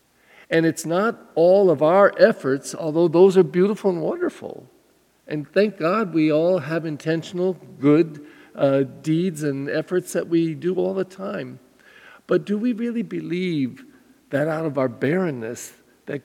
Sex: male